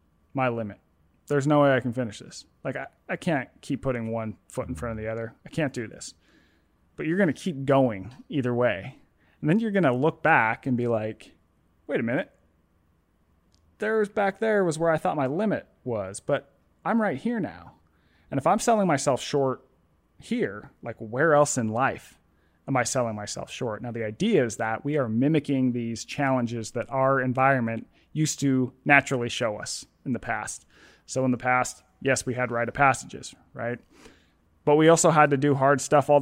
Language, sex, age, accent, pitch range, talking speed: English, male, 30-49, American, 115-140 Hz, 200 wpm